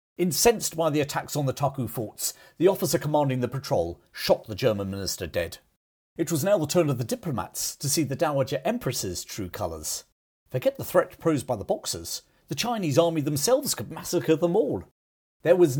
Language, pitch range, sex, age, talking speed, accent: English, 100-155 Hz, male, 50-69, 190 wpm, British